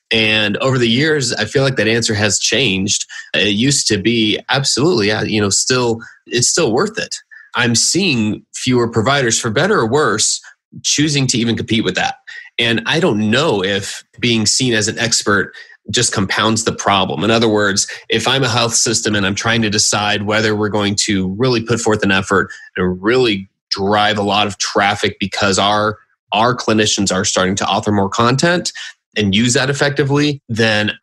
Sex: male